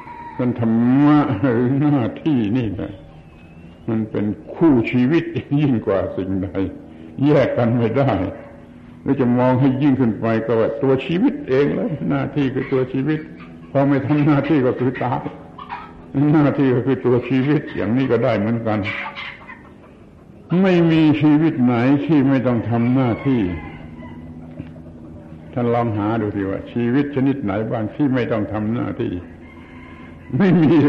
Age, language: 70-89, Thai